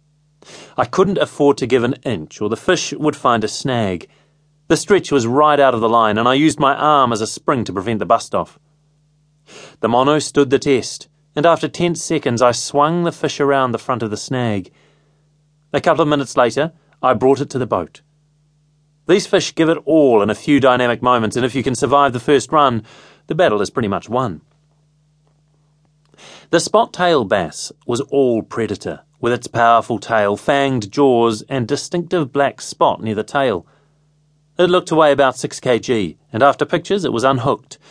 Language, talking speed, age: English, 190 wpm, 30-49